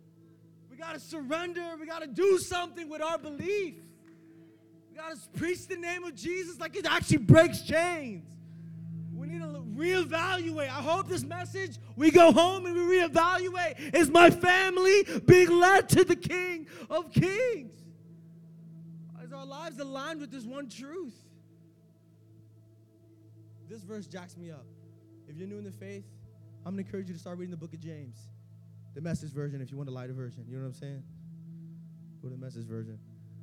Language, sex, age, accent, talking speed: English, male, 20-39, American, 175 wpm